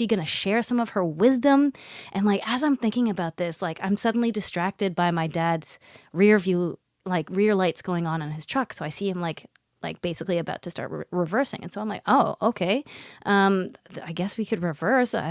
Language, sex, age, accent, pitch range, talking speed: English, female, 20-39, American, 175-215 Hz, 210 wpm